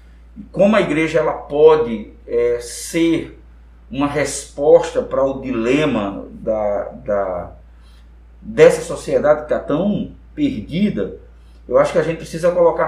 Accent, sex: Brazilian, male